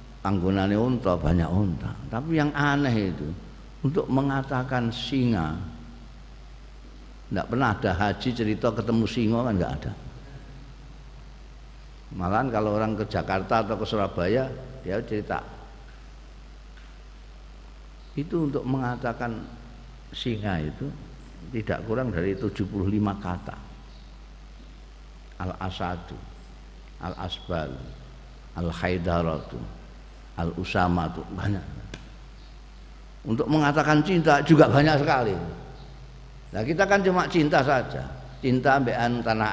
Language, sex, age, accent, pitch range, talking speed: Indonesian, male, 50-69, native, 90-130 Hz, 95 wpm